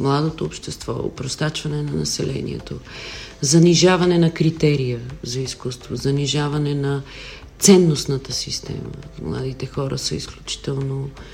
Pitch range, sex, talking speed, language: 130-160 Hz, female, 95 wpm, Bulgarian